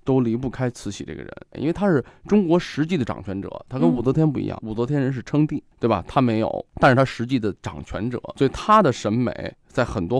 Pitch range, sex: 105-145 Hz, male